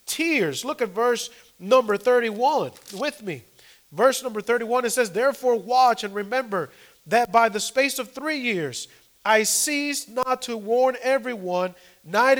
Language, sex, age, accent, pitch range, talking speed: English, male, 40-59, American, 205-260 Hz, 150 wpm